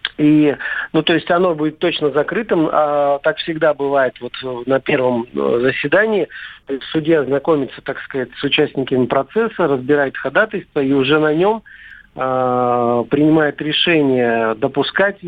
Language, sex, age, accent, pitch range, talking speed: Russian, male, 50-69, native, 135-155 Hz, 135 wpm